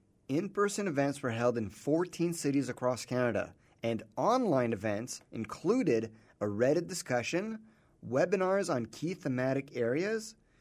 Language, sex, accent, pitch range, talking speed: English, male, American, 120-175 Hz, 120 wpm